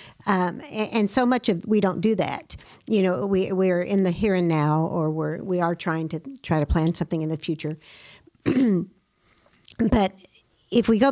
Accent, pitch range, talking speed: American, 170-220 Hz, 185 wpm